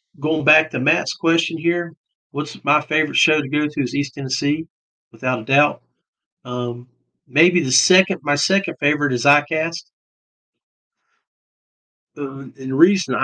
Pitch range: 125-150 Hz